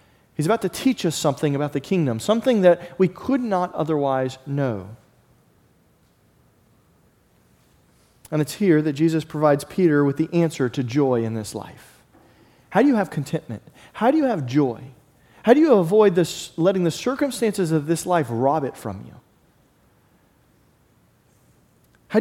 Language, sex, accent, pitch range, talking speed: English, male, American, 135-180 Hz, 155 wpm